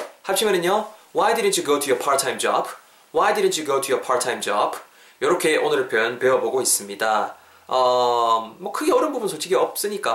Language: Korean